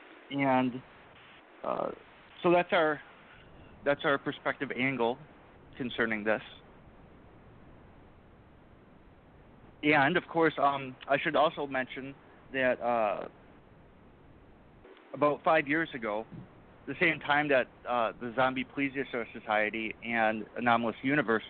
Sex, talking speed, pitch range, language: male, 105 wpm, 115-145 Hz, English